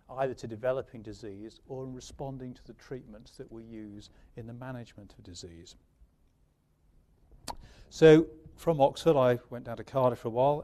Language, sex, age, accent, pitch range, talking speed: English, male, 40-59, British, 110-145 Hz, 165 wpm